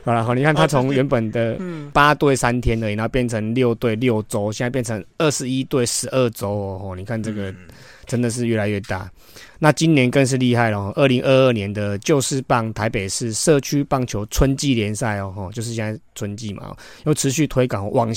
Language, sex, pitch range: Chinese, male, 110-135 Hz